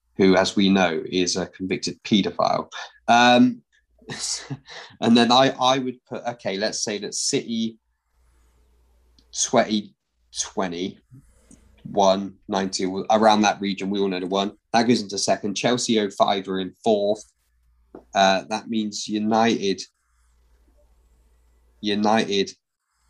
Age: 20-39